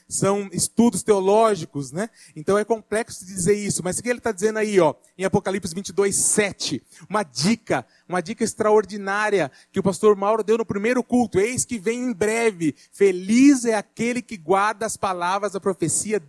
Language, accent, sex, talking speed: Portuguese, Brazilian, male, 175 wpm